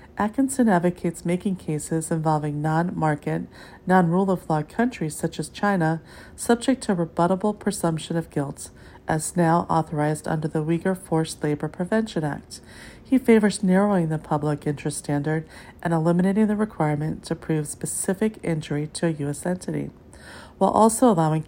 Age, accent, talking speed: 40-59, American, 135 wpm